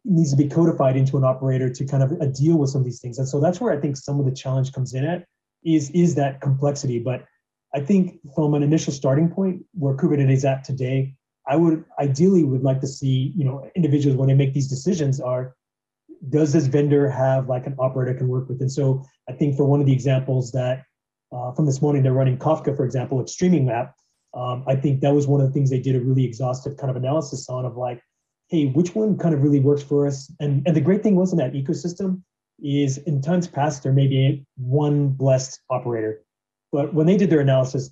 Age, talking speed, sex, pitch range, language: 30-49, 235 wpm, male, 130-155 Hz, English